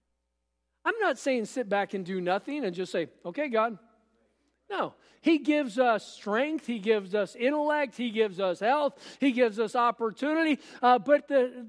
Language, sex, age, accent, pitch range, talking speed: English, male, 50-69, American, 180-260 Hz, 170 wpm